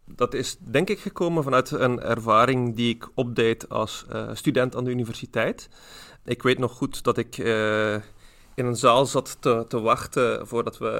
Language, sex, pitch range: Dutch, male, 115-130 Hz